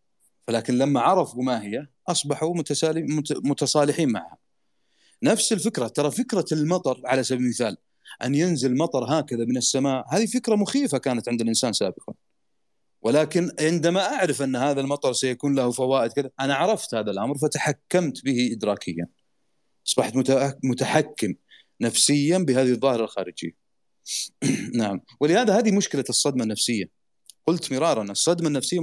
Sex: male